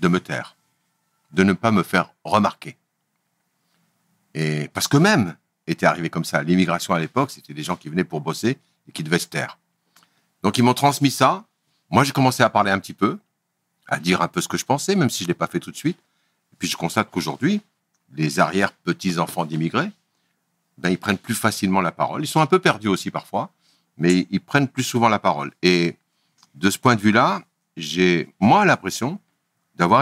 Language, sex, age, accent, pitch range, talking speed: French, male, 60-79, French, 85-130 Hz, 205 wpm